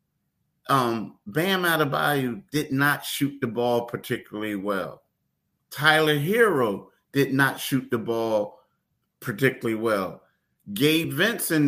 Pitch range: 115-155 Hz